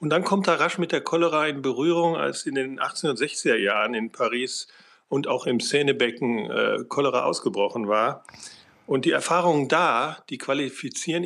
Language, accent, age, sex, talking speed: German, German, 40-59, male, 160 wpm